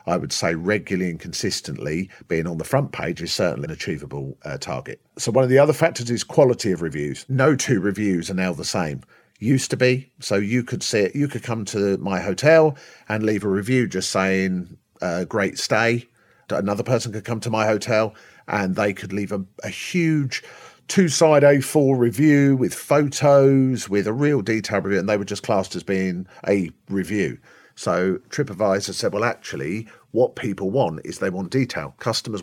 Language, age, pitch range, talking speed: English, 40-59, 95-125 Hz, 190 wpm